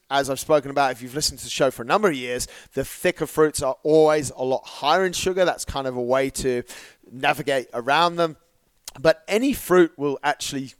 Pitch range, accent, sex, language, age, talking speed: 130-155 Hz, British, male, English, 30-49, 215 wpm